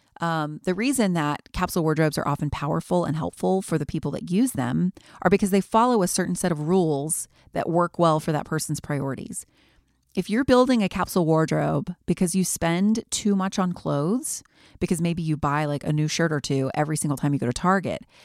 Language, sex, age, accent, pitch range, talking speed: English, female, 30-49, American, 150-200 Hz, 205 wpm